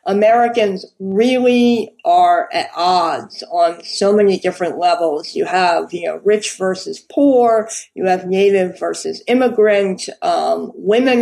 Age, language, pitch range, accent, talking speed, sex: 50-69, English, 195-265 Hz, American, 130 wpm, female